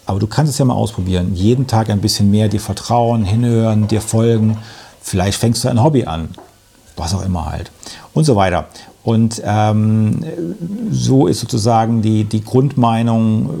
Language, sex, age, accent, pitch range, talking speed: German, male, 50-69, German, 105-125 Hz, 170 wpm